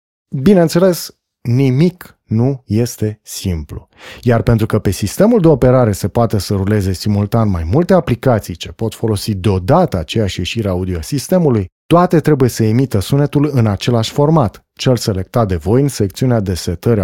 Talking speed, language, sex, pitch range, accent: 155 wpm, Romanian, male, 100-140 Hz, native